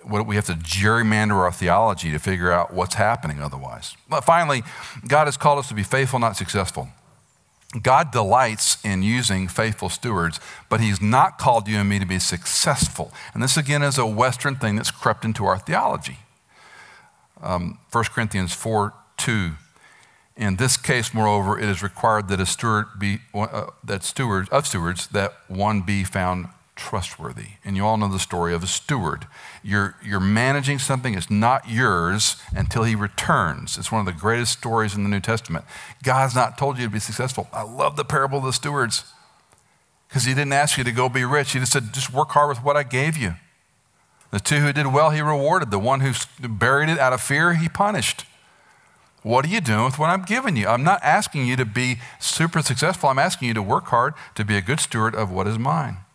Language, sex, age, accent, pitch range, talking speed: English, male, 50-69, American, 100-135 Hz, 200 wpm